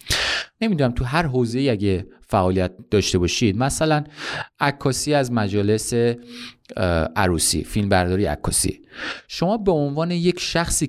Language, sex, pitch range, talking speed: Persian, male, 100-145 Hz, 110 wpm